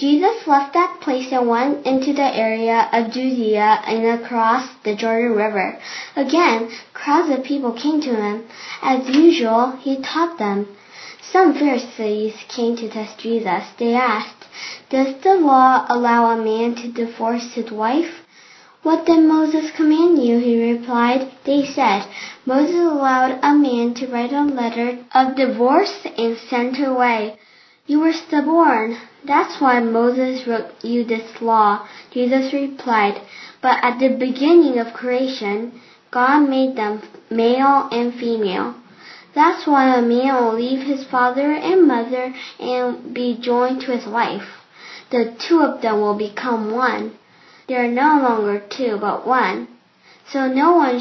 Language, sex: Korean, female